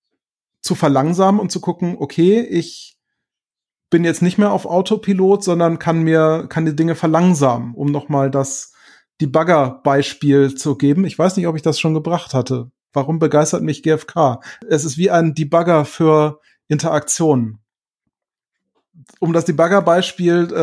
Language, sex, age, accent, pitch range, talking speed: German, male, 30-49, German, 150-175 Hz, 145 wpm